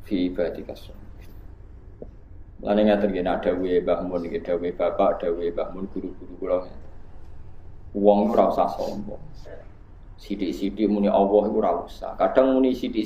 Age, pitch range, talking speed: 20-39, 95-115 Hz, 135 wpm